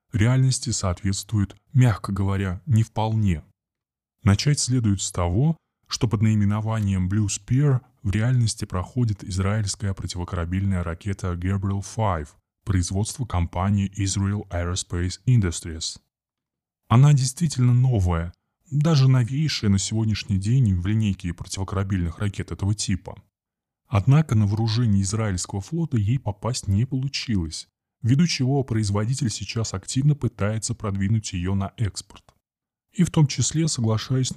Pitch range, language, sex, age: 95-120 Hz, Russian, male, 20-39